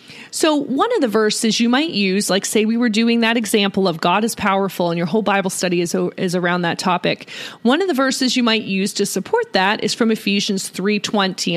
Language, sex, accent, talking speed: English, female, American, 225 wpm